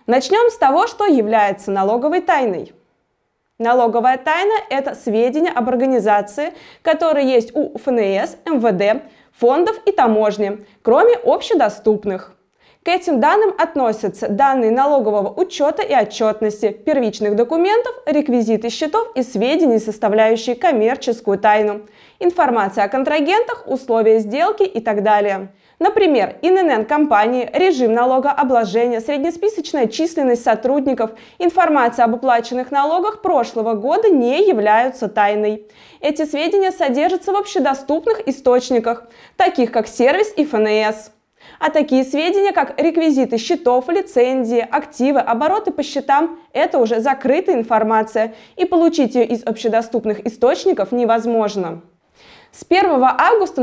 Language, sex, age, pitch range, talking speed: Russian, female, 20-39, 225-330 Hz, 115 wpm